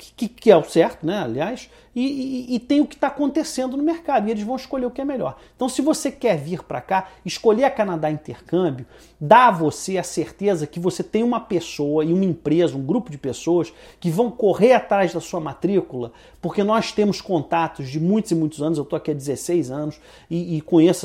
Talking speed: 220 wpm